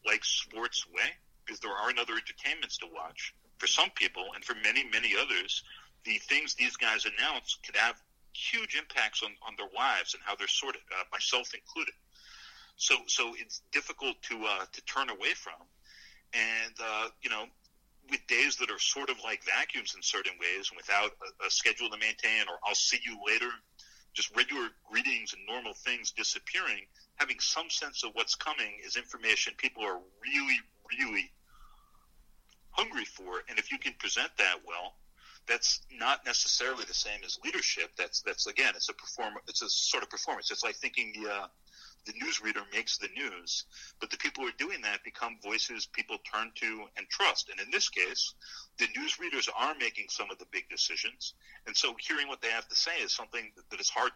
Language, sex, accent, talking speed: English, male, American, 190 wpm